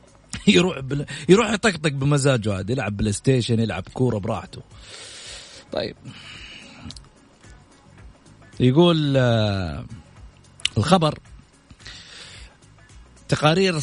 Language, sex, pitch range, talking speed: Arabic, male, 135-175 Hz, 55 wpm